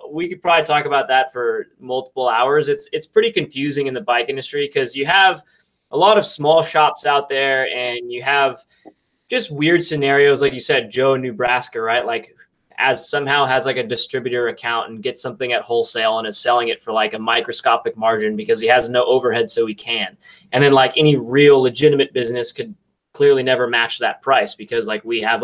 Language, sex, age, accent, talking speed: English, male, 20-39, American, 205 wpm